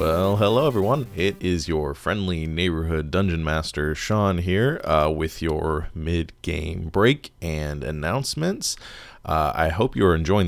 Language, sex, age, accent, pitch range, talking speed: English, male, 20-39, American, 80-100 Hz, 135 wpm